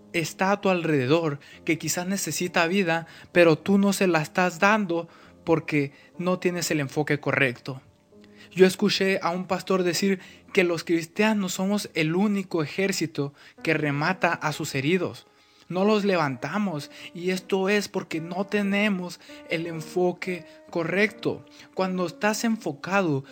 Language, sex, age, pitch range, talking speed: Spanish, male, 20-39, 155-190 Hz, 140 wpm